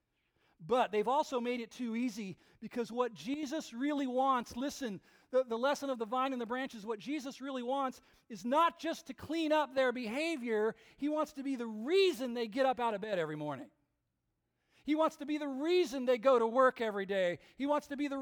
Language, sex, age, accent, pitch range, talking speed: English, male, 40-59, American, 190-265 Hz, 215 wpm